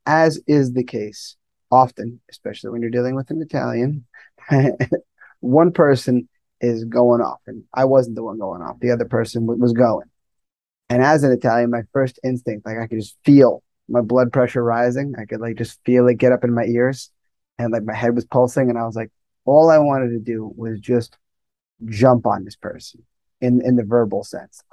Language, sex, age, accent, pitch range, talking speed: English, male, 20-39, American, 115-125 Hz, 200 wpm